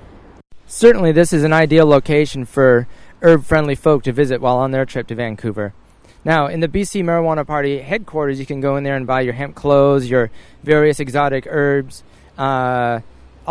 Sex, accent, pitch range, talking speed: male, American, 120-150 Hz, 180 wpm